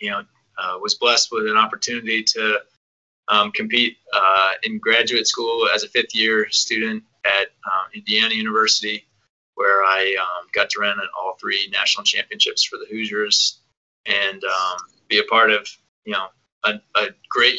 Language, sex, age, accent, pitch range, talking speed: English, male, 20-39, American, 105-135 Hz, 165 wpm